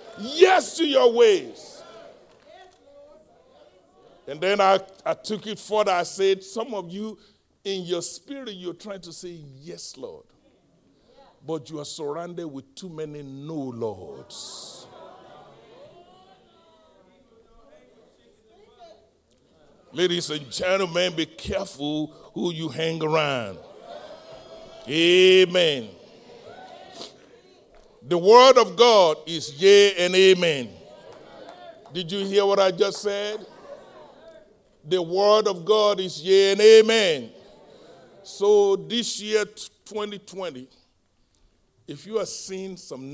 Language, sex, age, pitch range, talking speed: English, male, 60-79, 155-210 Hz, 105 wpm